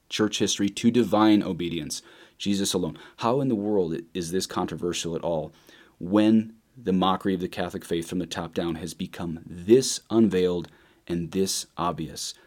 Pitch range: 95-115 Hz